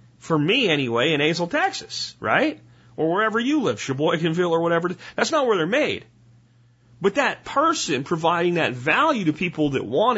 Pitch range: 120-170 Hz